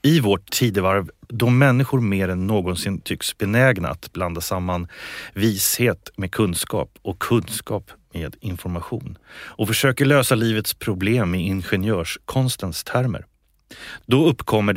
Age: 30-49